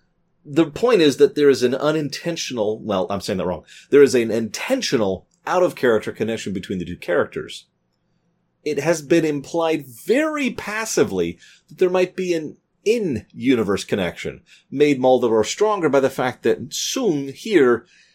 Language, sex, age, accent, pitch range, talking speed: English, male, 30-49, American, 95-145 Hz, 150 wpm